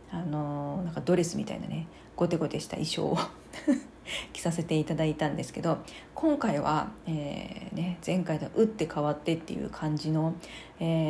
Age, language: 40-59, Japanese